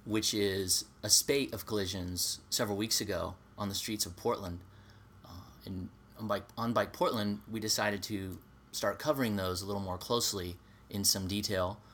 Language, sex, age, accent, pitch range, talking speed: English, male, 30-49, American, 95-110 Hz, 160 wpm